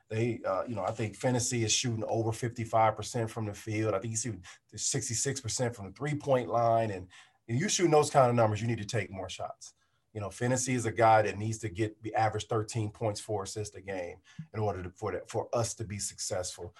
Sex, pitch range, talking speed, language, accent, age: male, 110-130 Hz, 230 wpm, English, American, 40-59